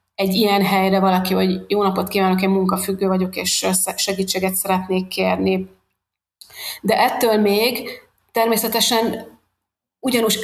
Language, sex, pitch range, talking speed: Hungarian, female, 190-205 Hz, 120 wpm